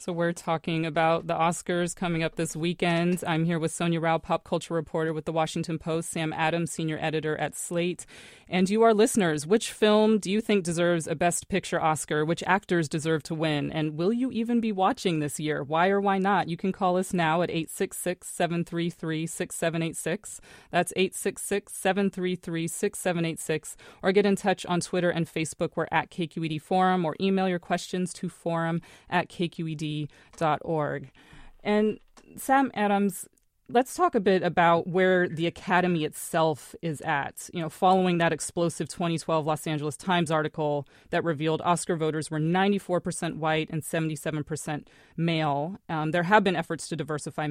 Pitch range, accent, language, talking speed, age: 160-185 Hz, American, English, 165 wpm, 30-49